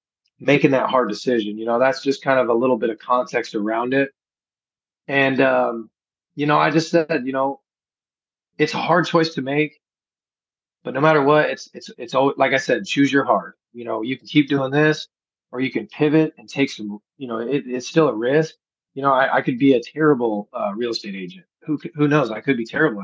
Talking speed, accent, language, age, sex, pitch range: 225 wpm, American, English, 30-49, male, 125-150 Hz